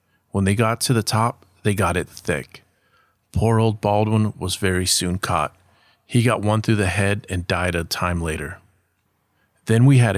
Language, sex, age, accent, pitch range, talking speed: English, male, 30-49, American, 95-110 Hz, 185 wpm